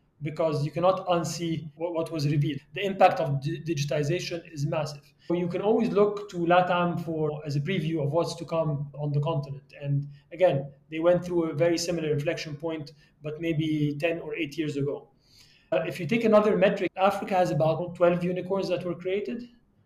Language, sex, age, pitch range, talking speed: English, male, 30-49, 150-180 Hz, 190 wpm